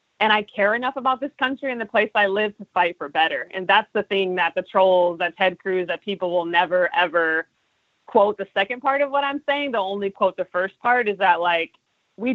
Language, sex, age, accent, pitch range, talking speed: English, female, 30-49, American, 170-210 Hz, 240 wpm